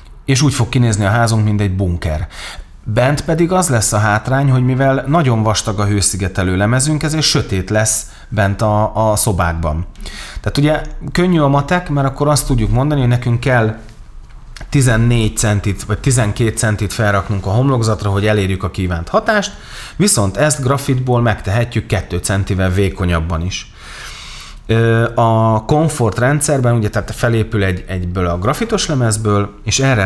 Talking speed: 150 wpm